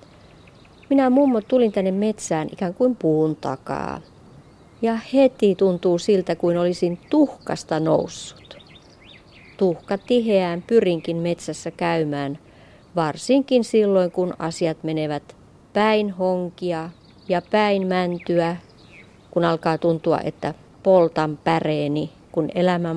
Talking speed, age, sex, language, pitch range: 105 wpm, 30-49, female, Finnish, 155-195 Hz